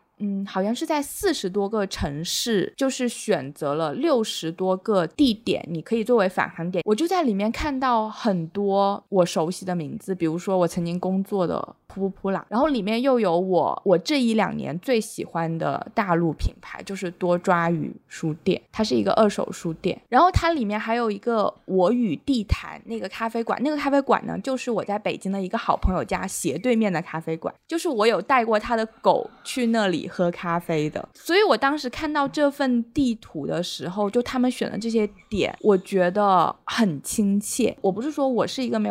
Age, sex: 20-39, female